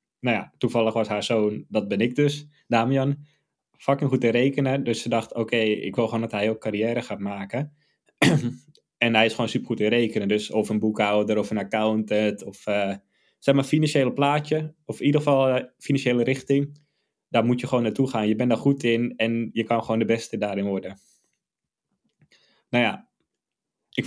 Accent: Dutch